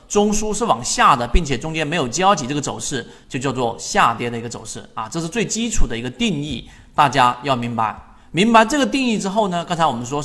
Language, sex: Chinese, male